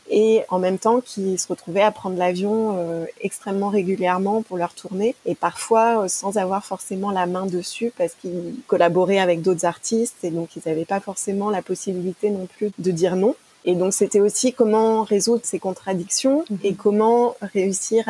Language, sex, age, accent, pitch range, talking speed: French, female, 20-39, French, 180-215 Hz, 175 wpm